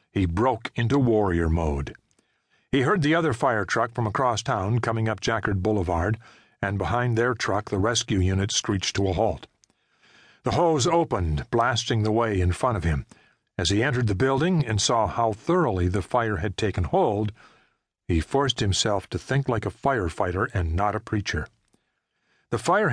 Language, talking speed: English, 175 wpm